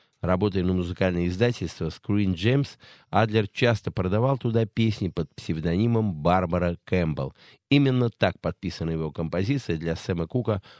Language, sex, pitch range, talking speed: Russian, male, 85-110 Hz, 130 wpm